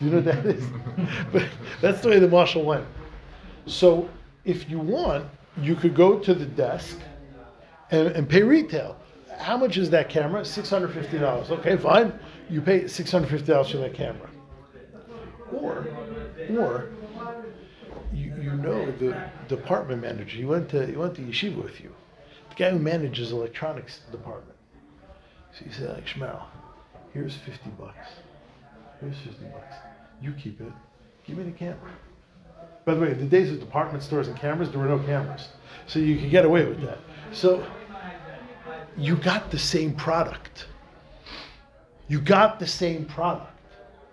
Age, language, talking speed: 50-69, English, 160 wpm